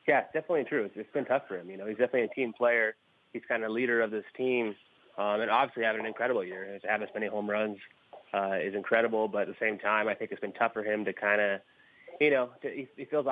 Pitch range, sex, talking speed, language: 105-120 Hz, male, 260 wpm, English